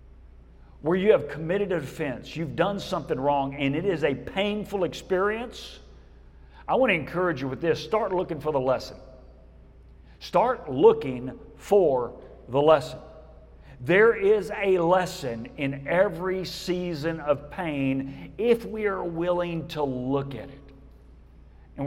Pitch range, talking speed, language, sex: 140-190 Hz, 140 wpm, English, male